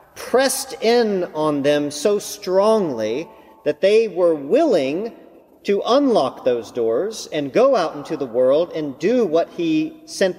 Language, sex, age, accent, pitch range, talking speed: English, male, 40-59, American, 145-235 Hz, 145 wpm